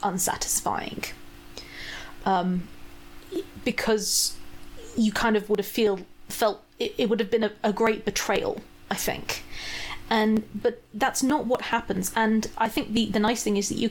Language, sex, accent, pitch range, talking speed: English, female, British, 205-235 Hz, 160 wpm